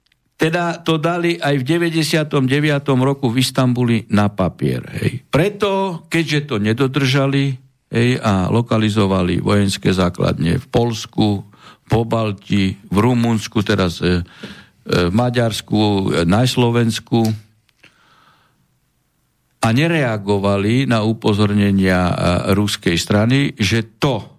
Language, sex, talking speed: Slovak, male, 110 wpm